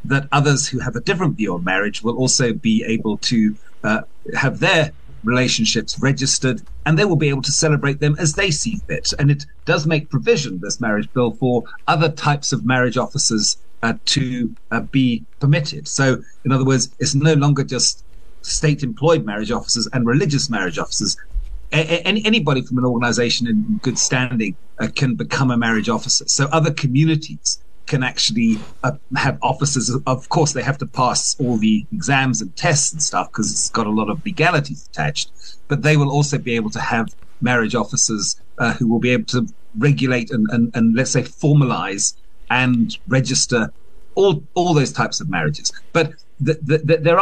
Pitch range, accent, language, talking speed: 120-150 Hz, British, English, 185 wpm